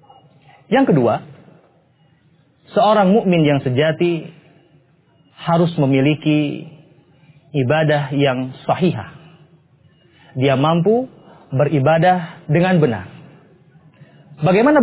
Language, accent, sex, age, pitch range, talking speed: English, Indonesian, male, 30-49, 140-170 Hz, 70 wpm